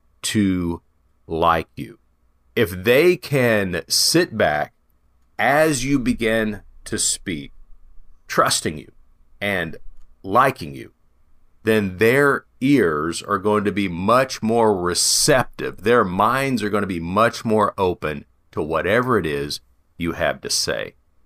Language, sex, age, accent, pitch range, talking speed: English, male, 40-59, American, 85-140 Hz, 125 wpm